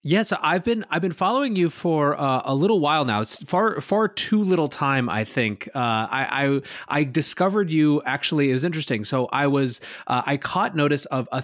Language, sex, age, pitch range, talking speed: English, male, 30-49, 110-145 Hz, 220 wpm